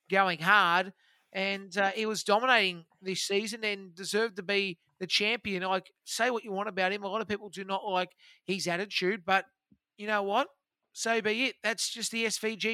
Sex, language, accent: male, English, Australian